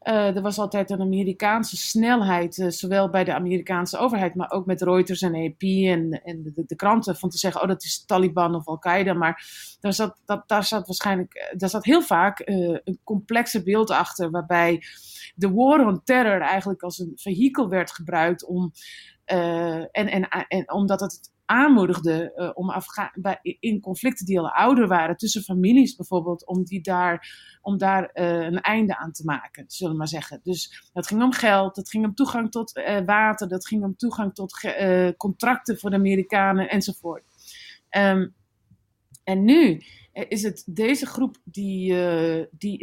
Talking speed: 175 wpm